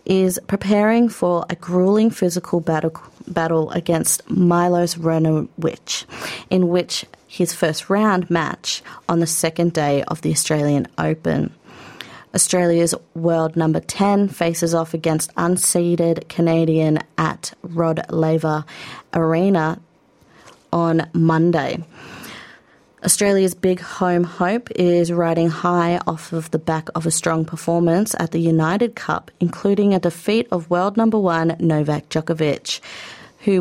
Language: English